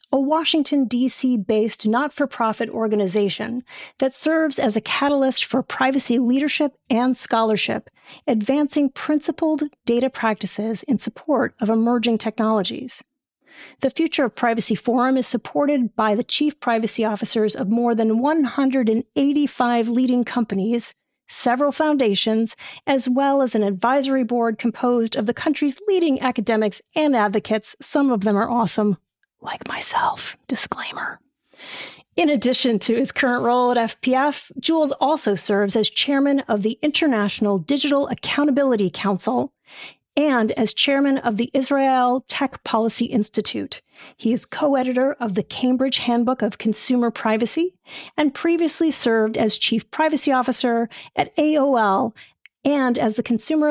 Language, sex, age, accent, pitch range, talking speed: English, female, 40-59, American, 225-280 Hz, 130 wpm